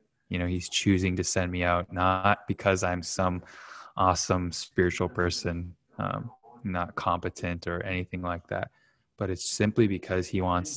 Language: English